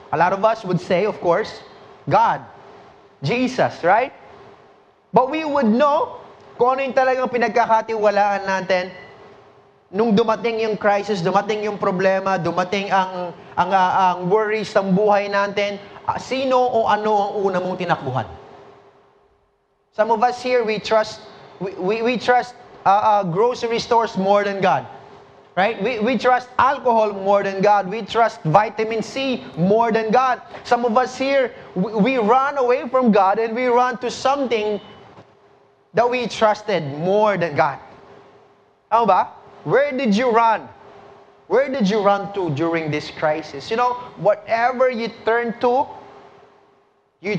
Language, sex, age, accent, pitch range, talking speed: English, male, 20-39, Filipino, 190-240 Hz, 145 wpm